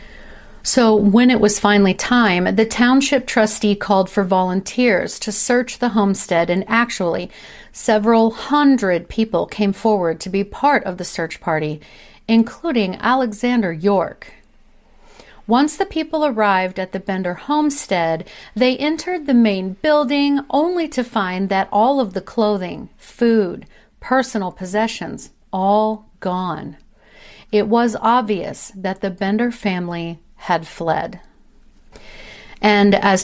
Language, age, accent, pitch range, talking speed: English, 40-59, American, 185-235 Hz, 125 wpm